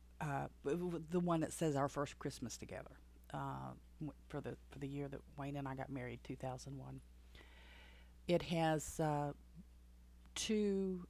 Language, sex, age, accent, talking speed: English, female, 40-59, American, 140 wpm